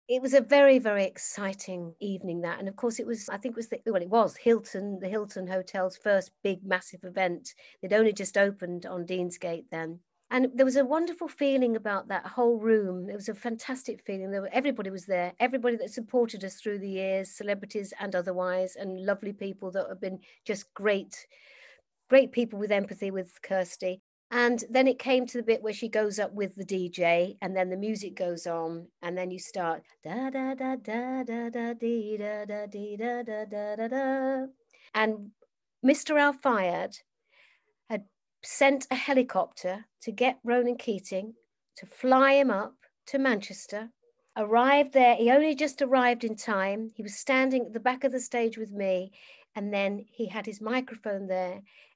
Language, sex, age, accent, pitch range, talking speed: English, female, 50-69, British, 190-245 Hz, 185 wpm